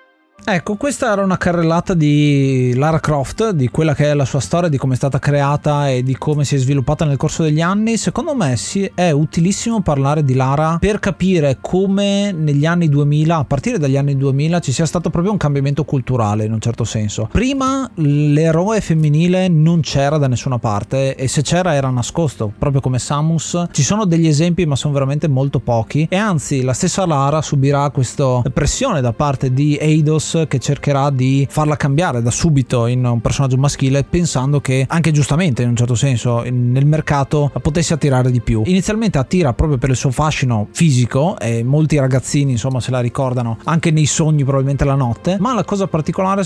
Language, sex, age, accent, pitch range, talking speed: Italian, male, 30-49, native, 135-170 Hz, 190 wpm